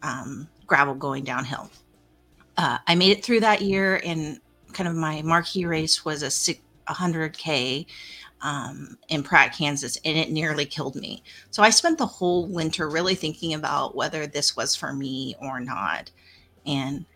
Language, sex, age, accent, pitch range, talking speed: English, female, 30-49, American, 140-175 Hz, 155 wpm